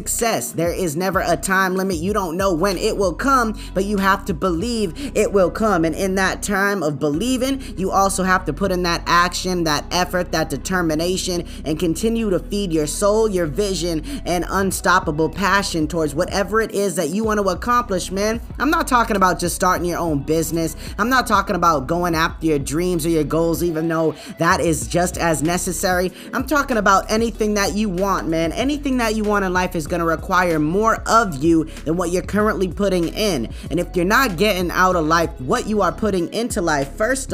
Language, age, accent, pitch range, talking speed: English, 20-39, American, 165-205 Hz, 210 wpm